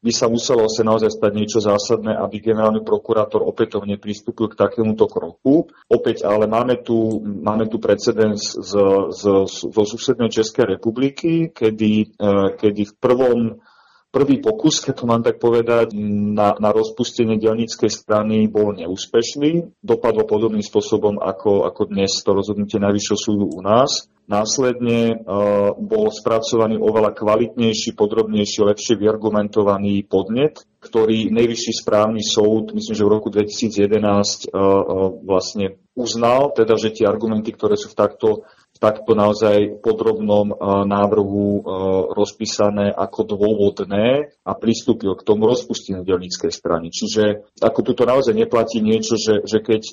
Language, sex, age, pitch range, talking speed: Slovak, male, 40-59, 105-115 Hz, 135 wpm